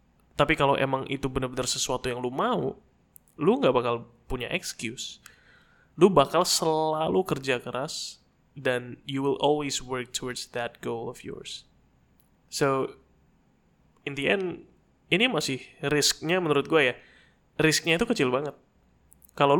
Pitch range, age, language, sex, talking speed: 125-155 Hz, 20-39, Indonesian, male, 135 wpm